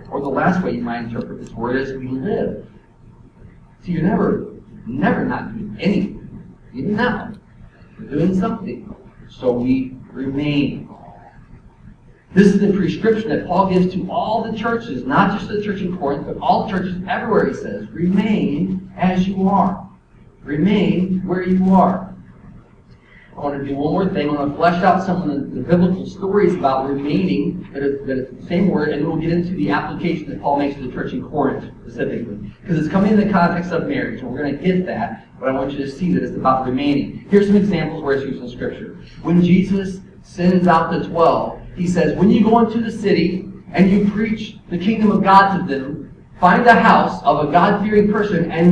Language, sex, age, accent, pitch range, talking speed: English, male, 40-59, American, 145-195 Hz, 200 wpm